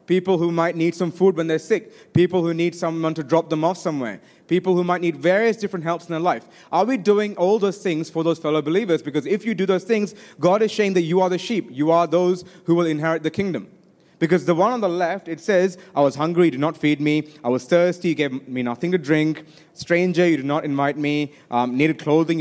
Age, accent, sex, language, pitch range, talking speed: 30-49, native, male, Malayalam, 155-190 Hz, 255 wpm